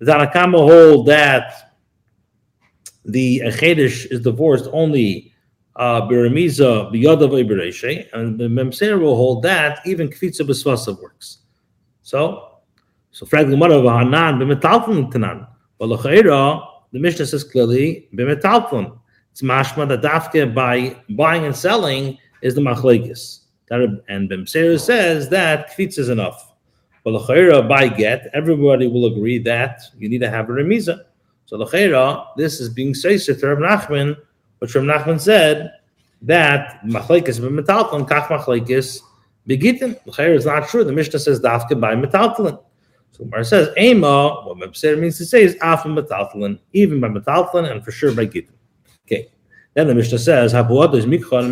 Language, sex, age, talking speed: English, male, 50-69, 135 wpm